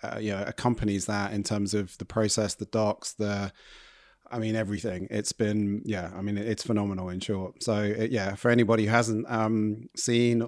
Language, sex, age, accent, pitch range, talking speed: English, male, 30-49, British, 105-115 Hz, 190 wpm